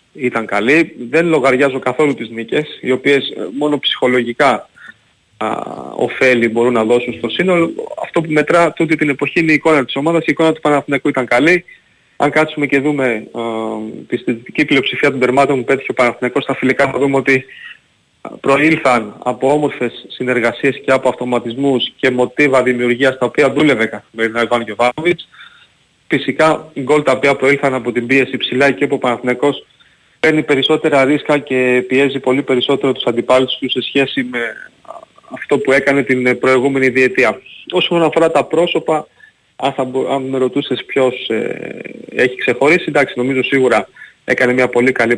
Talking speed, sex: 160 wpm, male